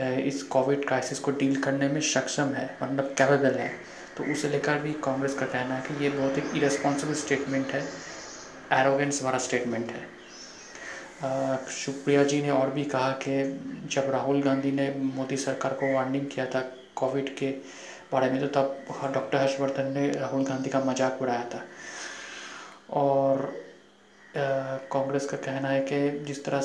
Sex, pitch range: male, 135-140 Hz